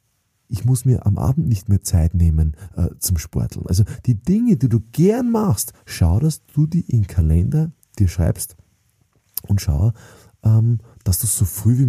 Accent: German